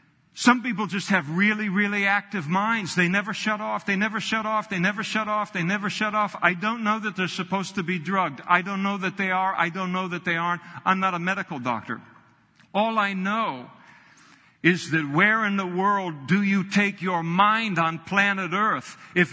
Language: English